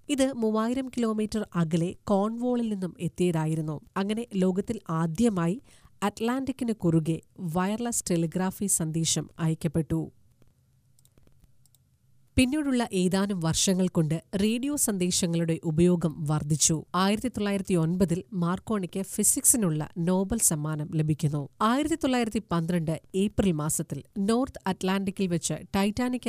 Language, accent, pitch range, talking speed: Malayalam, native, 160-210 Hz, 95 wpm